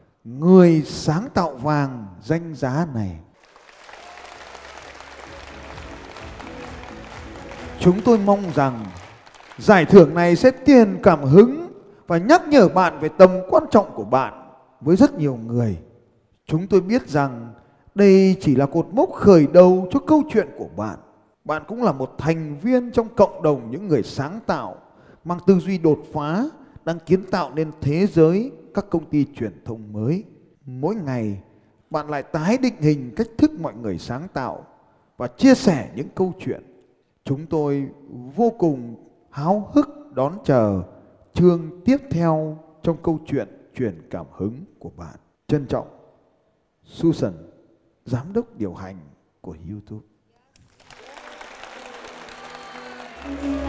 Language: Vietnamese